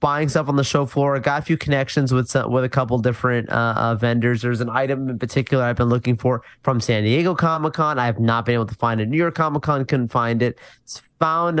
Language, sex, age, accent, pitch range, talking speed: English, male, 20-39, American, 115-145 Hz, 250 wpm